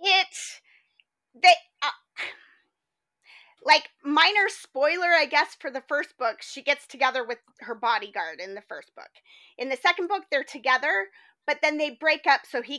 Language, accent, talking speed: English, American, 165 wpm